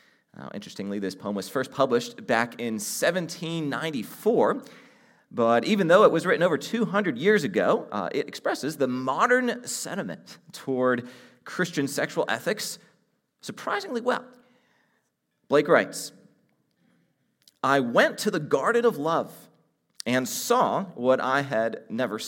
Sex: male